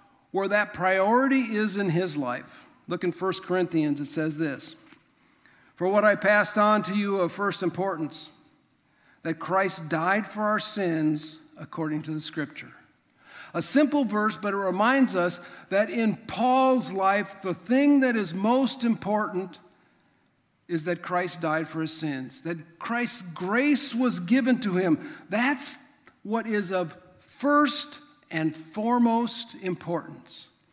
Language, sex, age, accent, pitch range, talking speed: English, male, 50-69, American, 175-235 Hz, 145 wpm